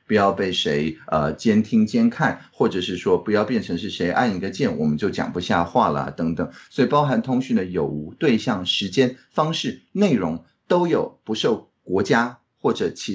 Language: Chinese